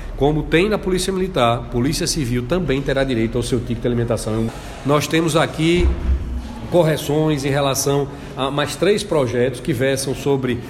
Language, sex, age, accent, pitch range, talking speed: Portuguese, male, 40-59, Brazilian, 125-150 Hz, 155 wpm